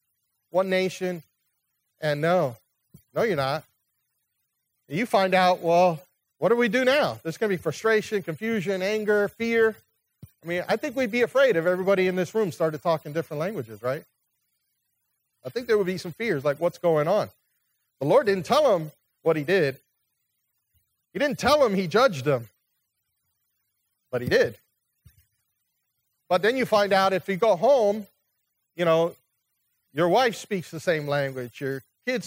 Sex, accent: male, American